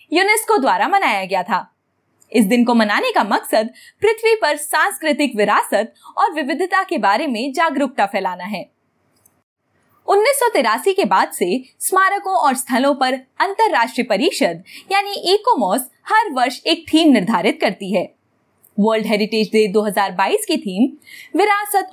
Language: Hindi